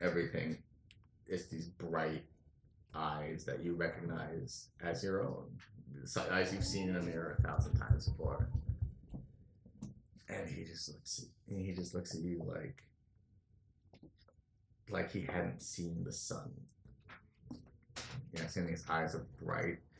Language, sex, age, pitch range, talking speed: English, male, 30-49, 85-105 Hz, 130 wpm